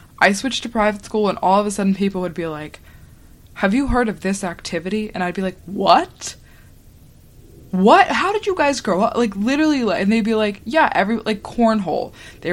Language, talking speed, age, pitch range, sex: English, 210 wpm, 20-39, 180-235 Hz, female